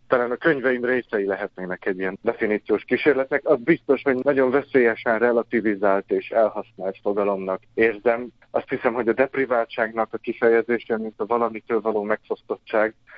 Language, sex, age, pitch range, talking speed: Hungarian, male, 30-49, 105-125 Hz, 140 wpm